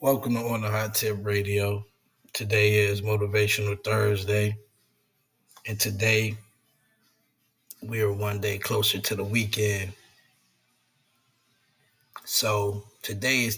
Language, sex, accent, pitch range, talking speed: English, male, American, 100-110 Hz, 100 wpm